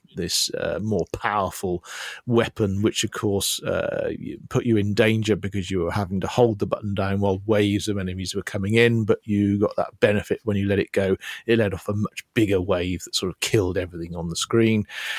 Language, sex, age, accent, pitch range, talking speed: English, male, 40-59, British, 100-120 Hz, 215 wpm